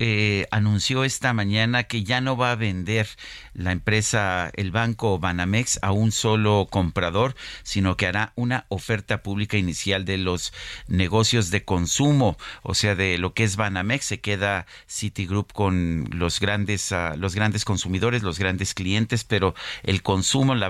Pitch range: 95-115 Hz